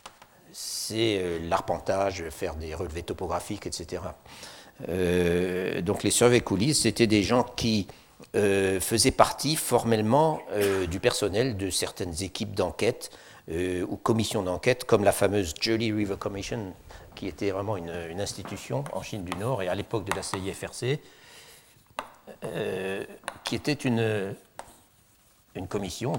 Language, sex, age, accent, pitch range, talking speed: French, male, 60-79, French, 85-110 Hz, 135 wpm